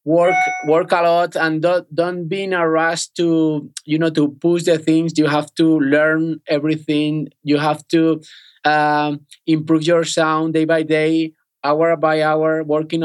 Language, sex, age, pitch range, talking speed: English, male, 20-39, 145-165 Hz, 170 wpm